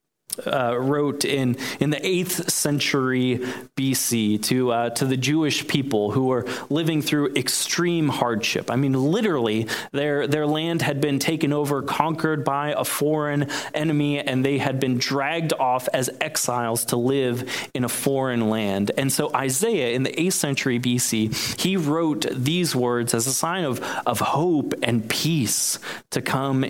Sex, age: male, 30-49